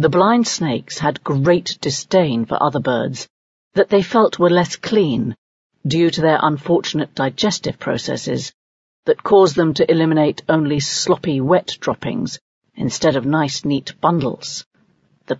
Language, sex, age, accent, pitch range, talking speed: English, female, 50-69, British, 145-190 Hz, 140 wpm